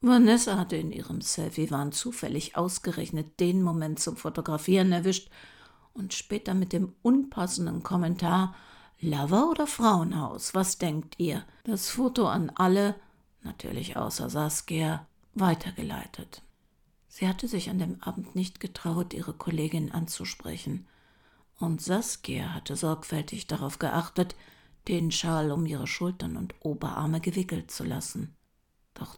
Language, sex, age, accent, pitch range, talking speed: German, female, 60-79, German, 160-195 Hz, 125 wpm